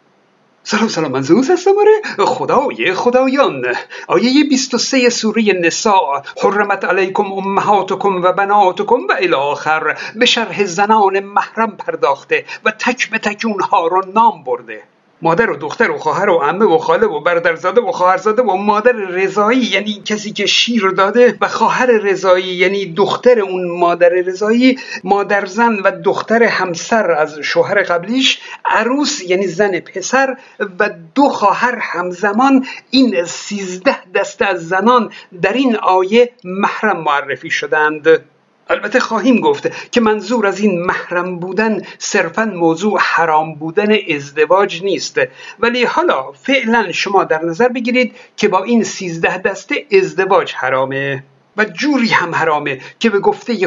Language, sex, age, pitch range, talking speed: Persian, male, 50-69, 185-250 Hz, 140 wpm